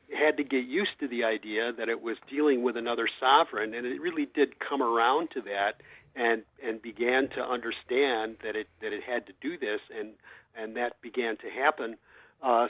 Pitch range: 115-145 Hz